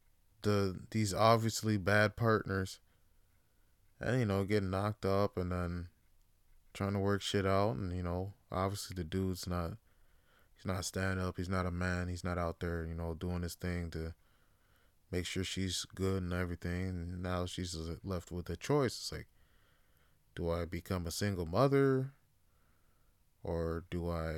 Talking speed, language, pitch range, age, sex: 165 wpm, English, 85-105 Hz, 20-39, male